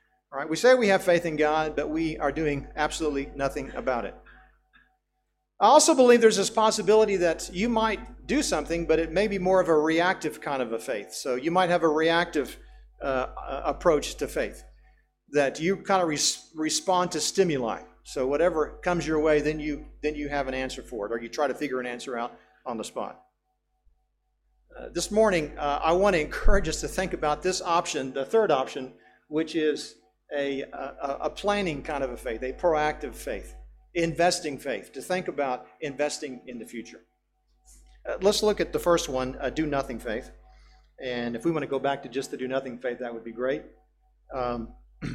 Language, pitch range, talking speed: English, 140-185 Hz, 200 wpm